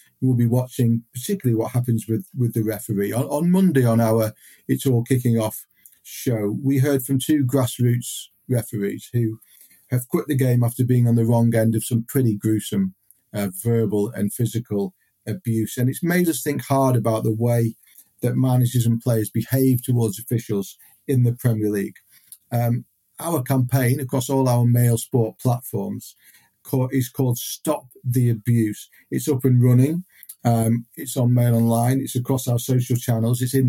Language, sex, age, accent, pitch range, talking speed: English, male, 40-59, British, 115-135 Hz, 170 wpm